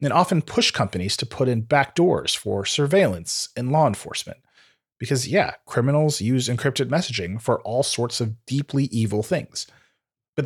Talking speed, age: 155 wpm, 30-49